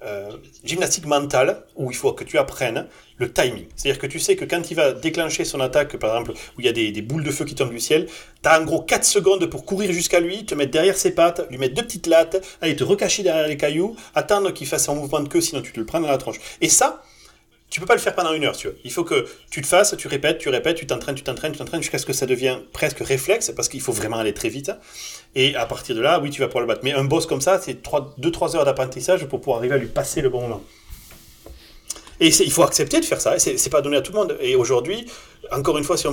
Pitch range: 135-205 Hz